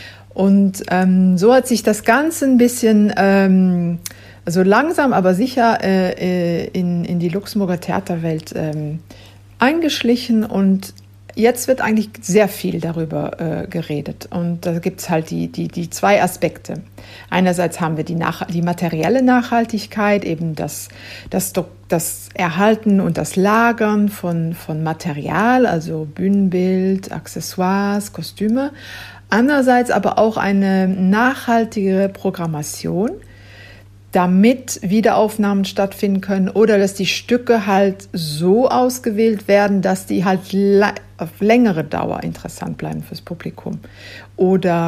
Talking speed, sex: 125 wpm, female